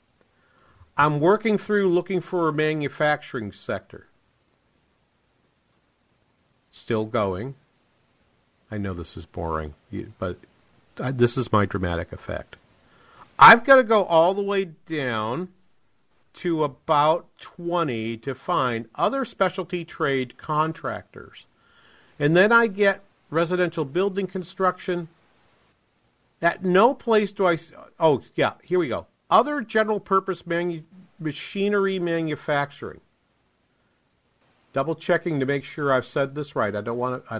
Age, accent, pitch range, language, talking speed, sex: 50-69, American, 120-180 Hz, English, 115 wpm, male